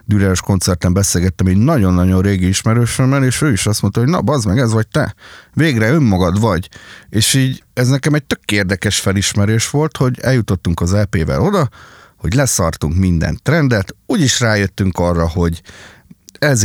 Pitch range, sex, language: 95-125 Hz, male, Hungarian